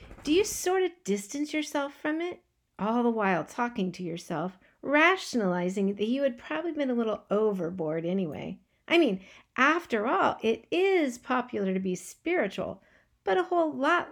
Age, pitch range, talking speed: 50-69, 195-285 Hz, 160 wpm